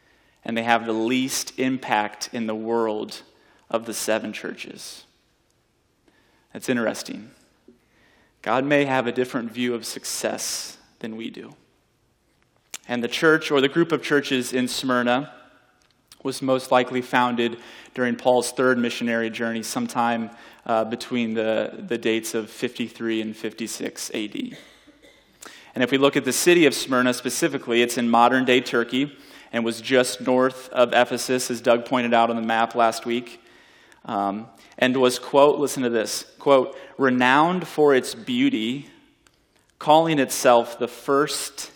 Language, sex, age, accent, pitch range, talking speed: English, male, 30-49, American, 115-135 Hz, 145 wpm